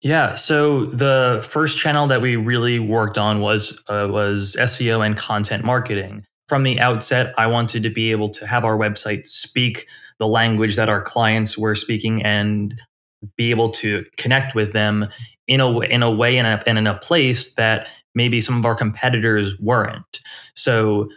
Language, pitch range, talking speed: English, 110-125 Hz, 175 wpm